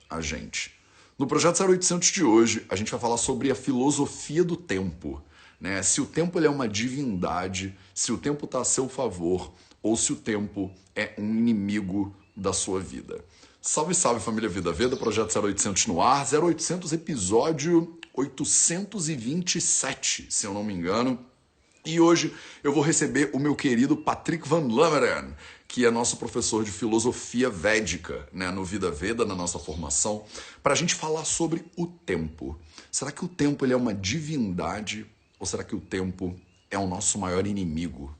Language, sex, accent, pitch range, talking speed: Portuguese, male, Brazilian, 95-150 Hz, 170 wpm